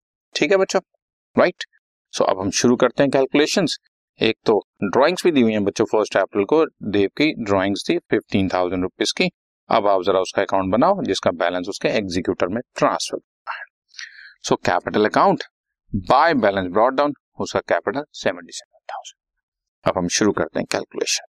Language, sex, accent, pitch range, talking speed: Hindi, male, native, 95-130 Hz, 145 wpm